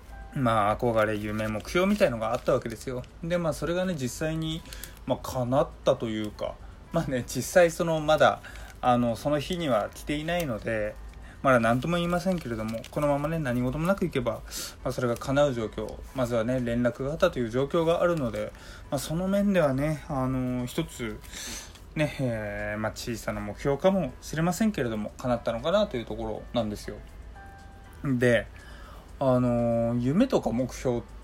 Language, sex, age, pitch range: Japanese, male, 20-39, 110-155 Hz